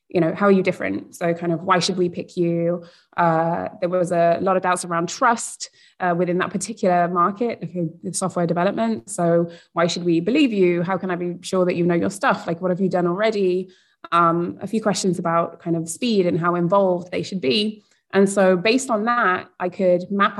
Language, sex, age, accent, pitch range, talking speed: English, female, 20-39, British, 170-190 Hz, 225 wpm